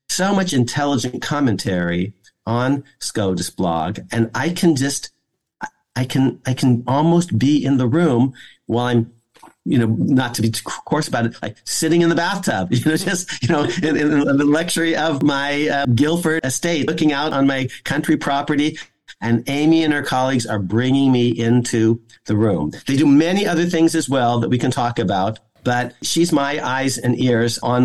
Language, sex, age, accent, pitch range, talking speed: English, male, 50-69, American, 115-140 Hz, 185 wpm